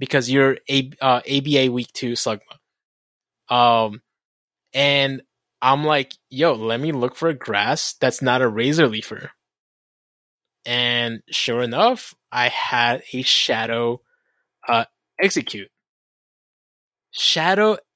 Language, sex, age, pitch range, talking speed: English, male, 20-39, 125-160 Hz, 115 wpm